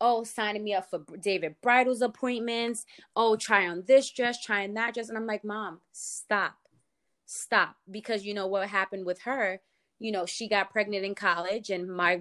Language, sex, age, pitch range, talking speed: English, female, 20-39, 180-215 Hz, 190 wpm